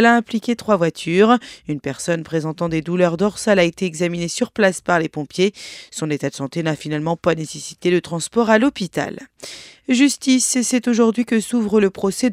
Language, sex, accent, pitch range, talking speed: French, female, French, 160-215 Hz, 185 wpm